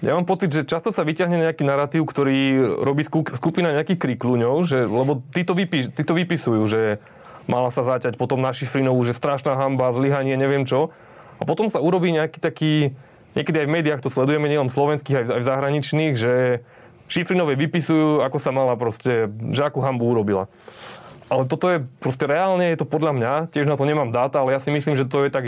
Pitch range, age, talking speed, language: 130-155 Hz, 20-39, 195 wpm, Slovak